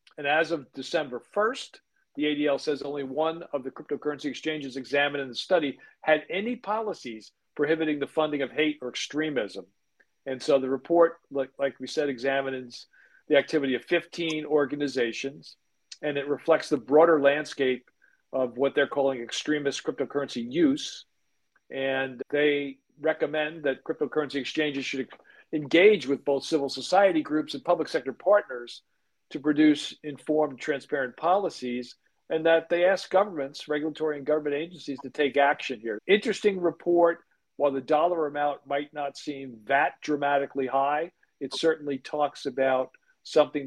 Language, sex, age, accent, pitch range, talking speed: English, male, 50-69, American, 135-160 Hz, 145 wpm